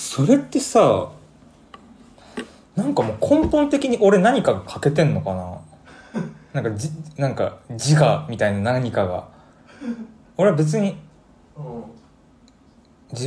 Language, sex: Japanese, male